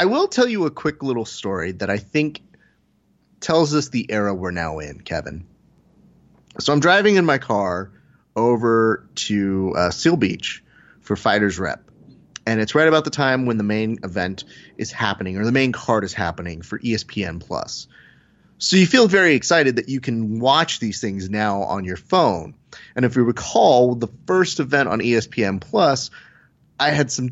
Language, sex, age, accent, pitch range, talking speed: English, male, 30-49, American, 100-135 Hz, 180 wpm